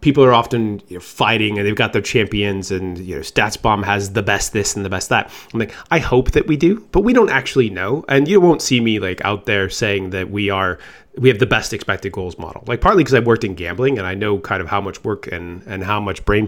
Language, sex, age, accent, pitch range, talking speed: English, male, 30-49, American, 100-120 Hz, 270 wpm